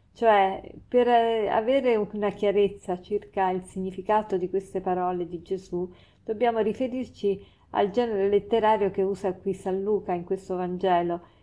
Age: 40-59